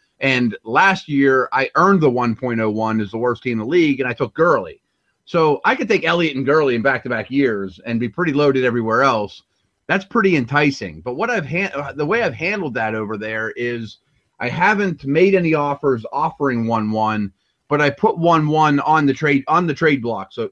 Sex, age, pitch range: male, 30-49, 120-155 Hz